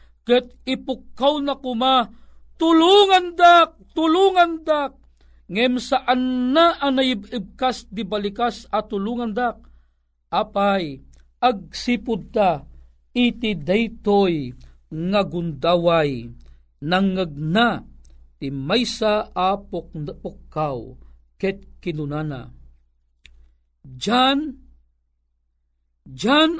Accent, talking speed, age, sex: Indian, 75 wpm, 50-69, male